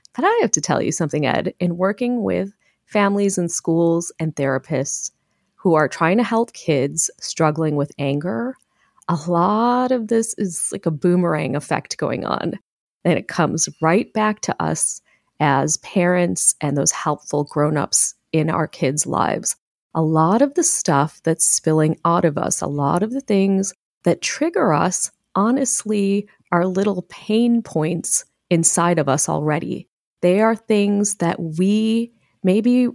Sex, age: female, 30-49